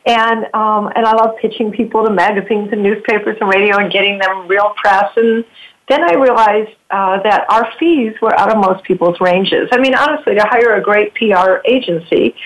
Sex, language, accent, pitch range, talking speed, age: female, English, American, 190-235 Hz, 195 wpm, 50-69